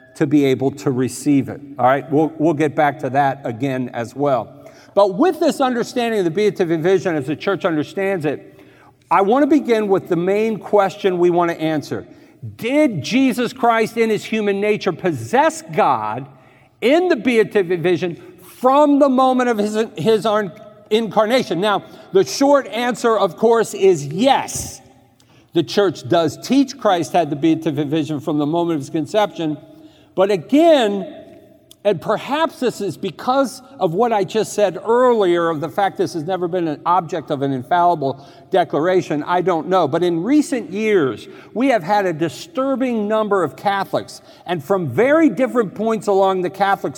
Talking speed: 170 wpm